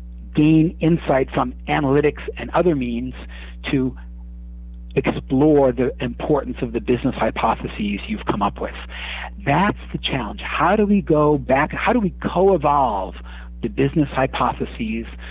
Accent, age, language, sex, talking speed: American, 50-69, English, male, 135 wpm